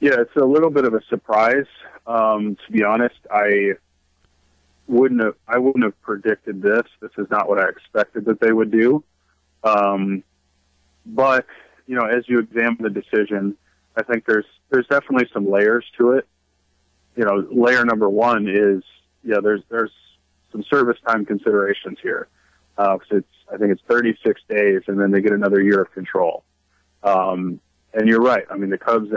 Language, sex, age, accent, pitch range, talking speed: English, male, 40-59, American, 95-115 Hz, 175 wpm